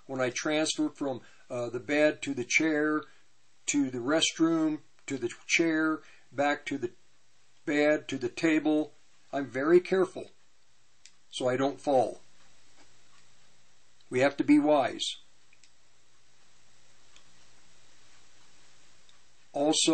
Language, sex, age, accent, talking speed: English, male, 50-69, American, 110 wpm